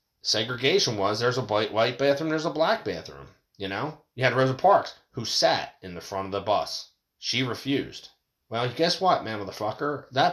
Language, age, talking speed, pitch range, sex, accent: English, 30-49, 190 wpm, 105-145 Hz, male, American